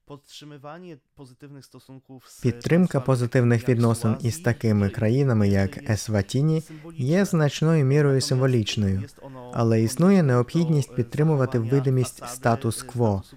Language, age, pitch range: Ukrainian, 20-39, 115-145 Hz